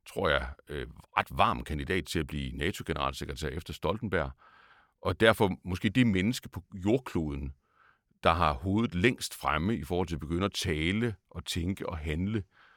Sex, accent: male, native